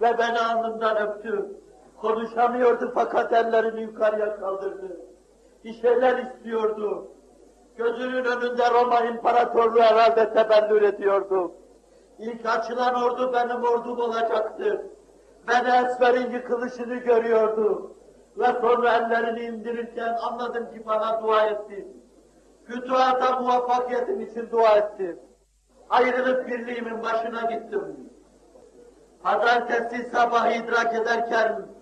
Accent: native